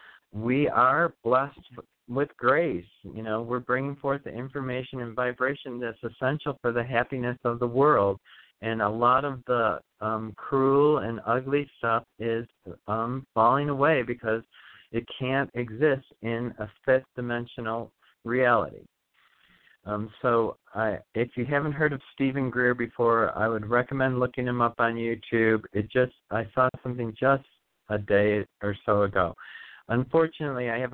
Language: English